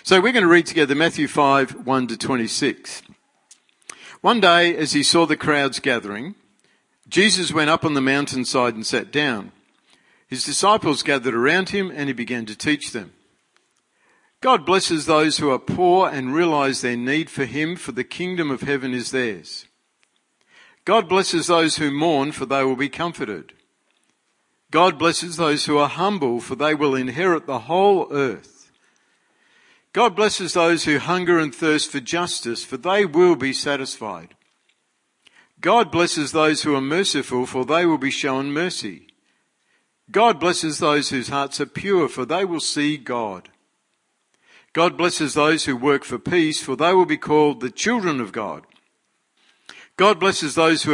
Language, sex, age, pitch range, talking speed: English, male, 50-69, 135-175 Hz, 165 wpm